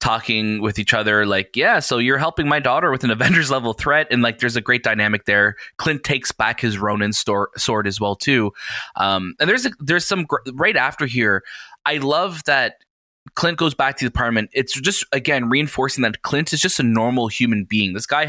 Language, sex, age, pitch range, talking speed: English, male, 20-39, 110-140 Hz, 215 wpm